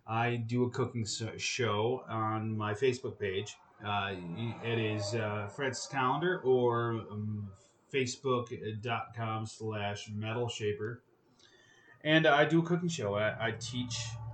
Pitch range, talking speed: 115-140 Hz, 120 wpm